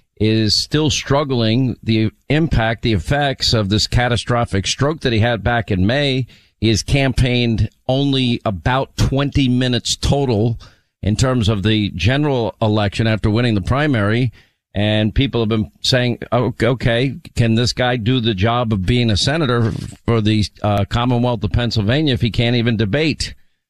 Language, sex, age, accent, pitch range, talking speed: English, male, 50-69, American, 110-130 Hz, 155 wpm